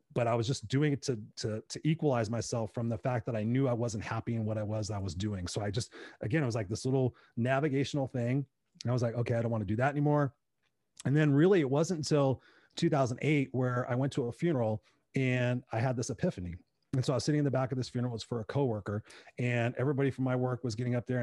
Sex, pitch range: male, 120-150 Hz